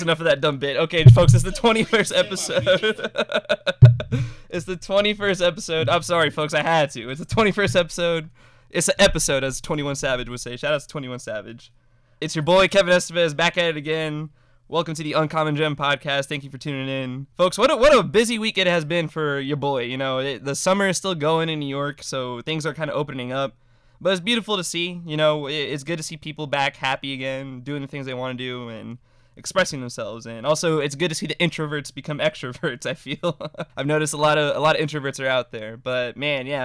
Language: English